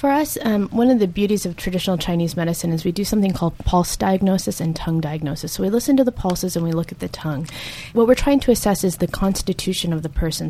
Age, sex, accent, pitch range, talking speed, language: 20-39, female, American, 165-210 Hz, 250 wpm, English